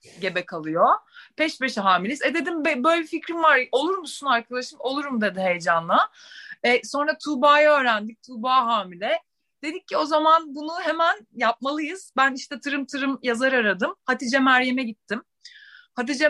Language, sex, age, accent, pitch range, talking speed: Turkish, female, 30-49, native, 200-280 Hz, 145 wpm